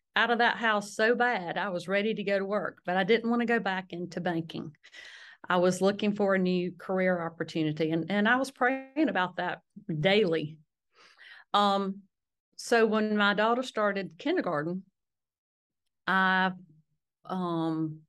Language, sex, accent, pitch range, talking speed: English, female, American, 180-205 Hz, 155 wpm